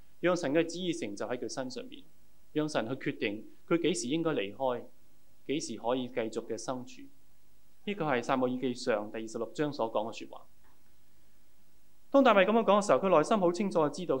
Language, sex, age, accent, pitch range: Chinese, male, 20-39, native, 125-185 Hz